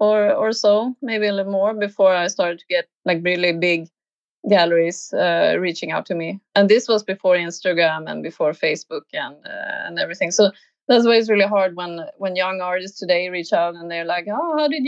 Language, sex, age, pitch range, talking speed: English, female, 30-49, 180-255 Hz, 210 wpm